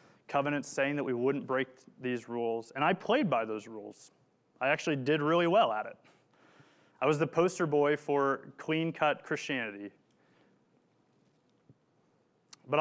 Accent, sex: American, male